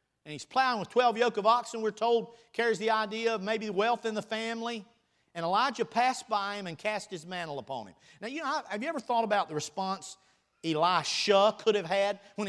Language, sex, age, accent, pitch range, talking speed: English, male, 50-69, American, 165-220 Hz, 215 wpm